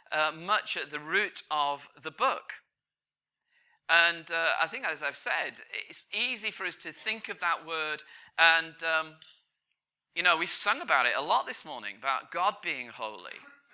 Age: 40-59